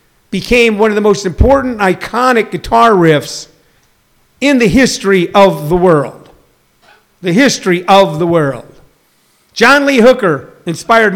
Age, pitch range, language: 50-69, 180-235 Hz, English